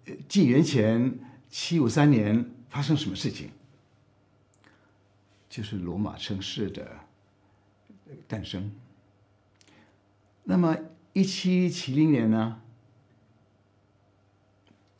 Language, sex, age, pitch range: Chinese, male, 60-79, 100-130 Hz